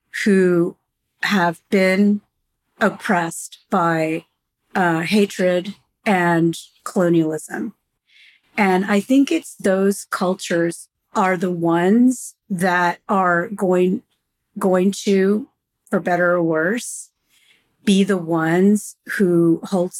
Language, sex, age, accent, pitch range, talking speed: English, female, 40-59, American, 175-215 Hz, 95 wpm